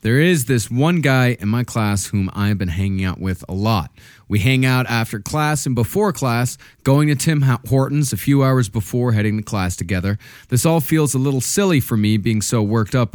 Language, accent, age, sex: English, American, 30-49, male